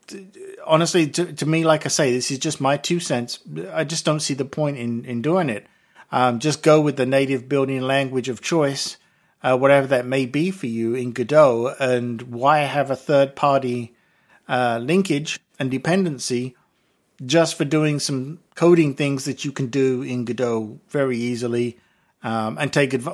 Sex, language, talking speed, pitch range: male, English, 180 wpm, 125-160 Hz